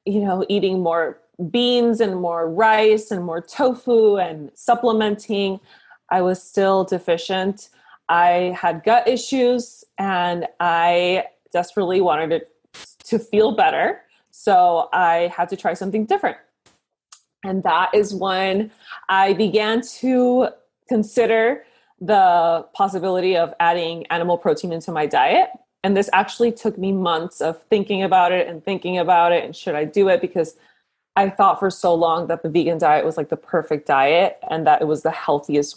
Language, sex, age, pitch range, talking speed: English, female, 20-39, 170-210 Hz, 155 wpm